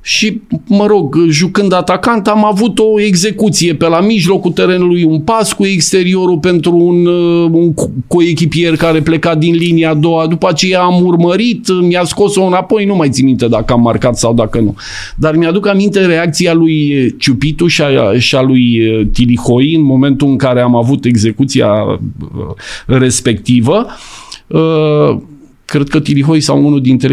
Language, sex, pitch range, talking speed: Romanian, male, 120-170 Hz, 150 wpm